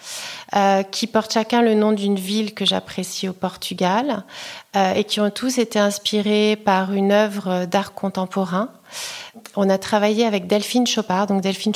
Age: 40-59